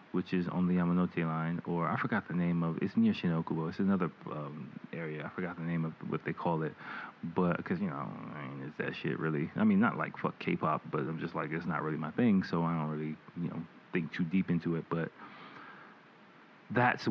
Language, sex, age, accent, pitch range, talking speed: English, male, 30-49, American, 85-100 Hz, 230 wpm